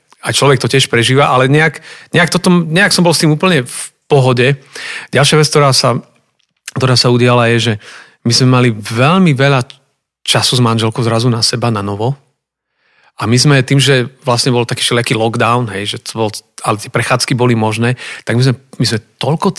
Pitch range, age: 120-145 Hz, 40-59